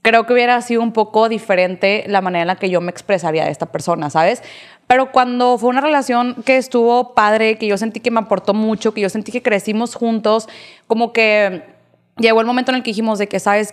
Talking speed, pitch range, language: 225 wpm, 195-230 Hz, Spanish